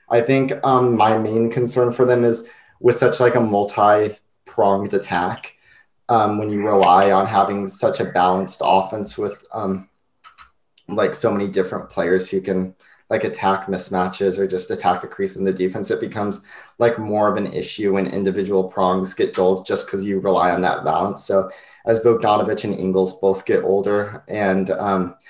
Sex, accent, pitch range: male, American, 95-105 Hz